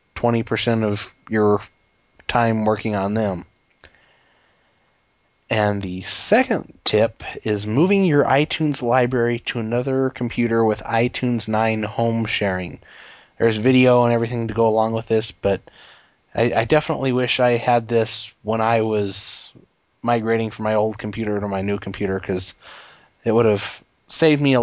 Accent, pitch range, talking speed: American, 105-120 Hz, 145 wpm